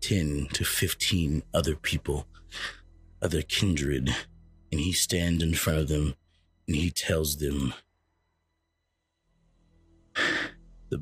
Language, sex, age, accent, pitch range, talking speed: English, male, 30-49, American, 80-105 Hz, 105 wpm